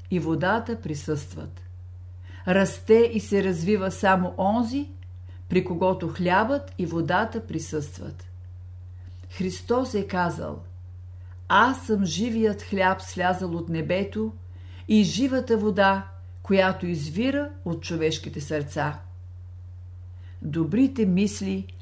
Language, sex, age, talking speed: Bulgarian, female, 50-69, 95 wpm